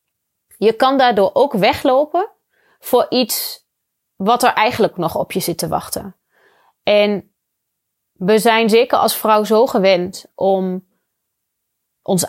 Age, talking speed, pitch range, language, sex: 30-49, 125 wpm, 180-260 Hz, Dutch, female